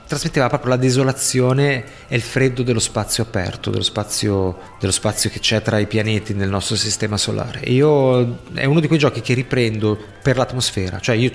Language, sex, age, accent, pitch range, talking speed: Italian, male, 30-49, native, 110-135 Hz, 190 wpm